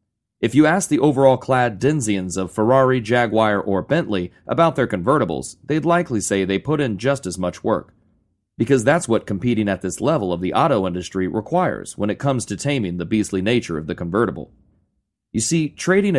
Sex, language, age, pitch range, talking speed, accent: male, English, 30-49, 95-130 Hz, 190 wpm, American